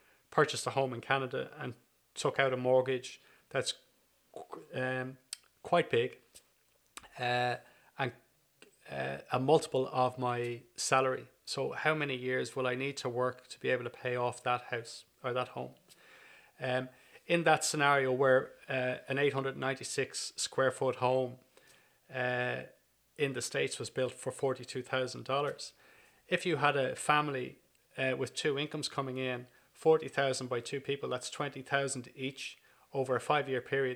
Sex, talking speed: male, 145 wpm